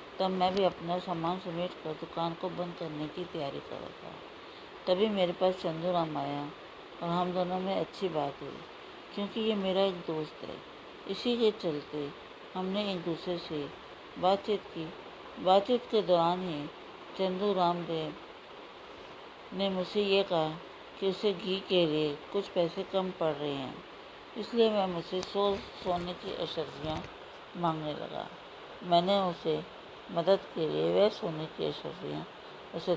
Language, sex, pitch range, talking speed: Hindi, female, 155-190 Hz, 145 wpm